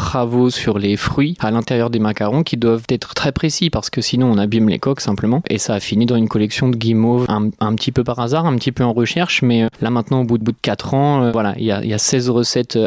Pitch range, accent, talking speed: 110-130 Hz, French, 280 wpm